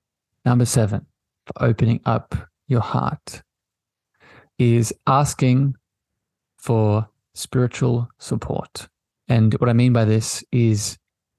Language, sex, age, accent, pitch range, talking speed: English, male, 20-39, Australian, 110-125 Hz, 95 wpm